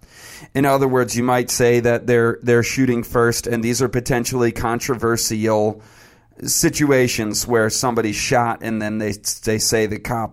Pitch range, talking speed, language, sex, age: 115-145 Hz, 155 wpm, English, male, 40-59